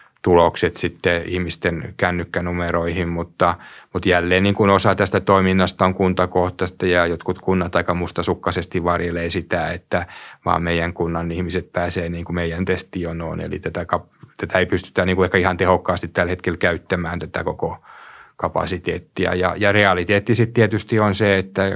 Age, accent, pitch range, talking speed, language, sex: 30-49, native, 90-95 Hz, 150 wpm, Finnish, male